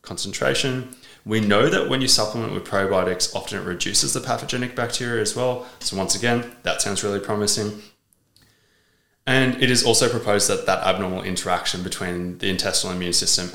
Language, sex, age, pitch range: English, male, 20-39, 95-120 Hz